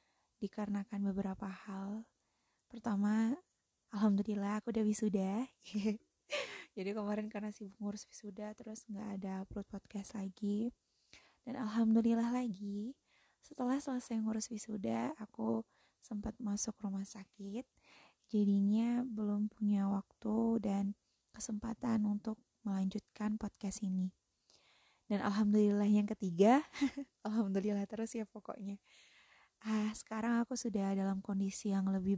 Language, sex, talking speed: Indonesian, female, 110 wpm